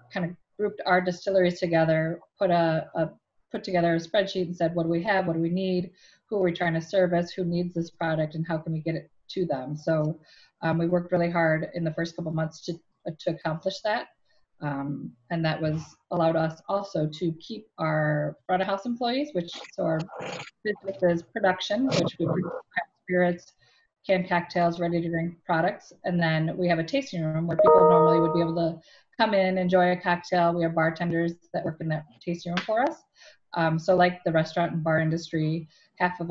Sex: female